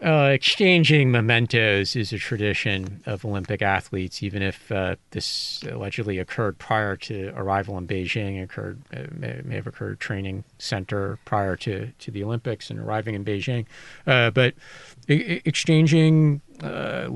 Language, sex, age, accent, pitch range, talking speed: English, male, 40-59, American, 100-130 Hz, 150 wpm